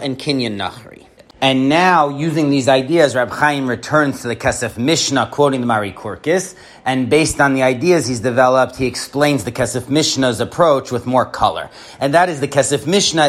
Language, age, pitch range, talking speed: English, 30-49, 125-155 Hz, 185 wpm